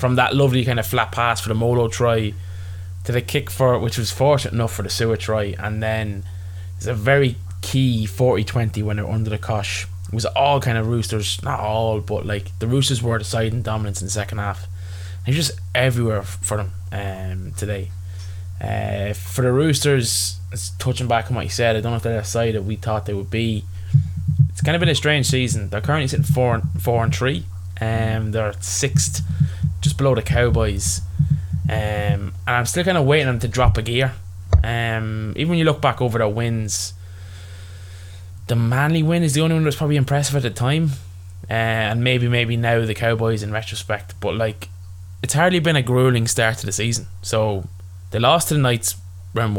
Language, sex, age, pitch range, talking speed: English, male, 20-39, 95-125 Hz, 205 wpm